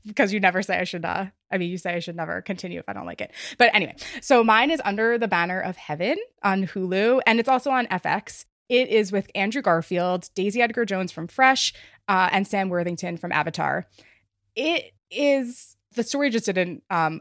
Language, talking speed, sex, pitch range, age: English, 210 wpm, female, 170-235 Hz, 20-39